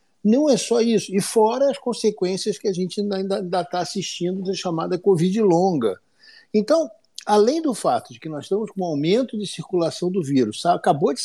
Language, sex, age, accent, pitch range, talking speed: Portuguese, male, 60-79, Brazilian, 150-220 Hz, 190 wpm